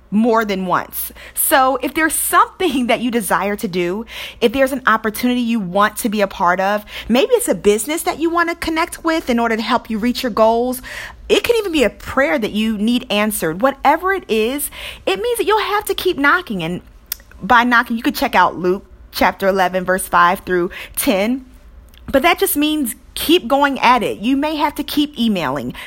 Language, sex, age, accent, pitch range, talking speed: English, female, 40-59, American, 215-295 Hz, 210 wpm